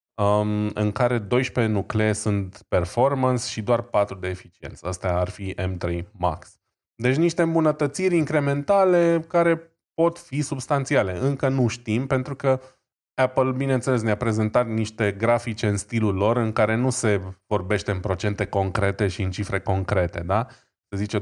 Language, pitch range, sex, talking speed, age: Romanian, 95-120 Hz, male, 150 wpm, 20-39